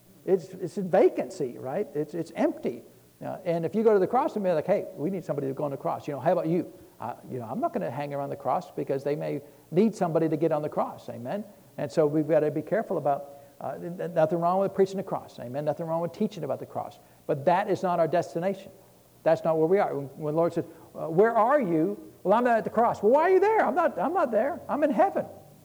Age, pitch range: 60-79, 155-205 Hz